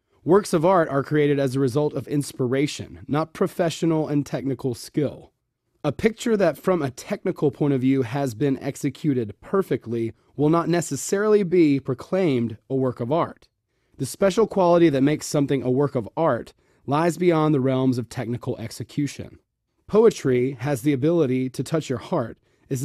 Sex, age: male, 30-49